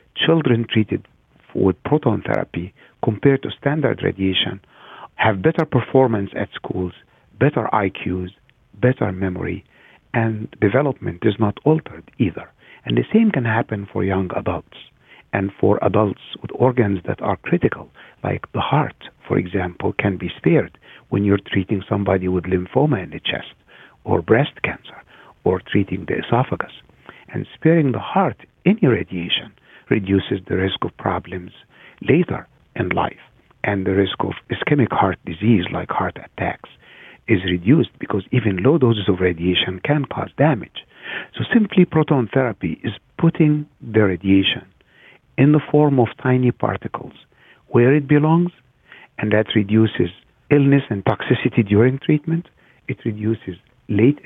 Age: 60-79